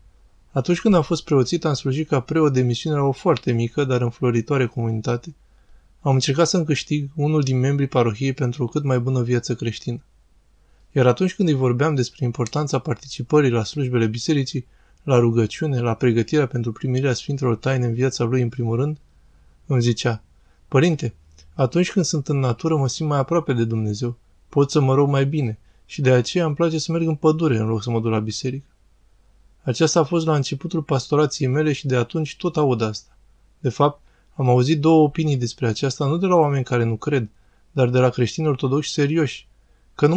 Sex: male